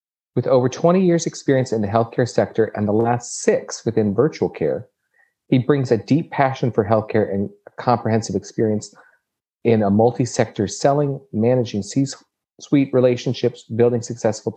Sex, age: male, 40-59